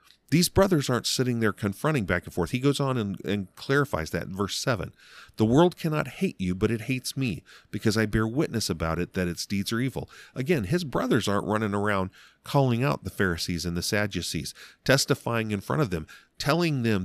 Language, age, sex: English, 40-59, male